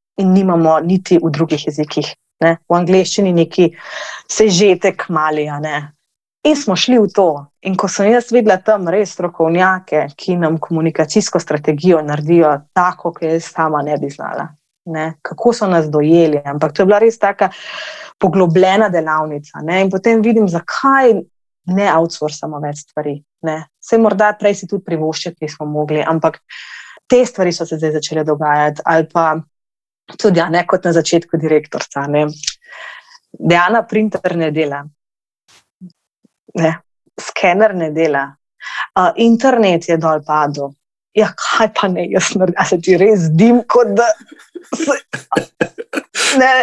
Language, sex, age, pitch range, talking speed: English, female, 20-39, 155-215 Hz, 145 wpm